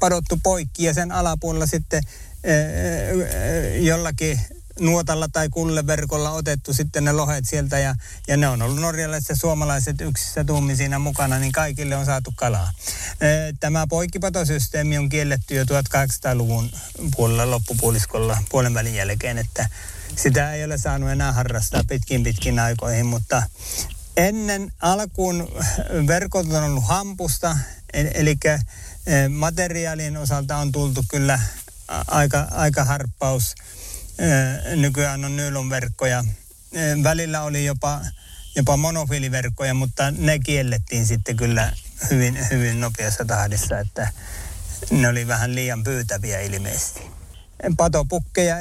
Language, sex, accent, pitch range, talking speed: Finnish, male, native, 115-155 Hz, 115 wpm